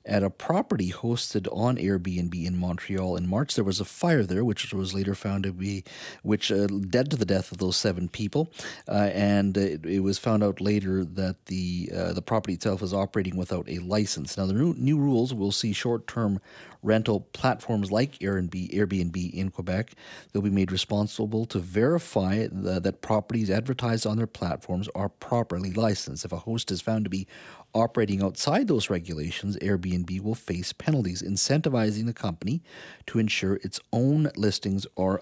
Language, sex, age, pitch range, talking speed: English, male, 40-59, 95-115 Hz, 175 wpm